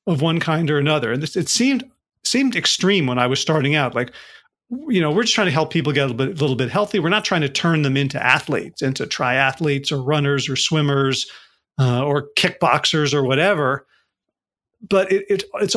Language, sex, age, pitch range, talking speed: English, male, 40-59, 145-190 Hz, 200 wpm